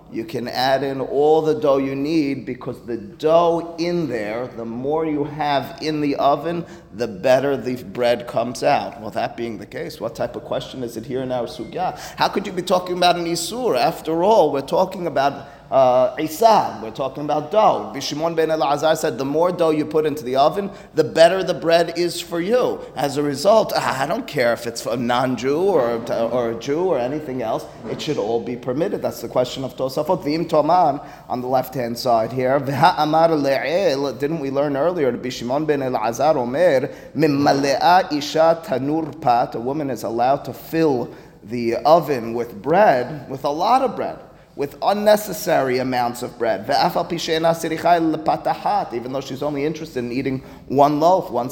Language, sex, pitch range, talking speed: English, male, 130-165 Hz, 170 wpm